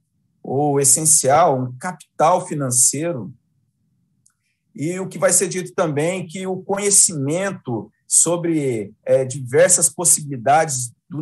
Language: Portuguese